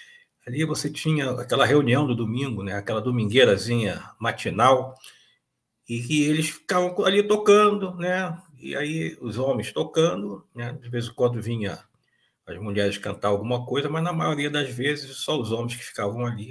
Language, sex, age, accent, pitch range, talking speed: Portuguese, male, 50-69, Brazilian, 115-175 Hz, 160 wpm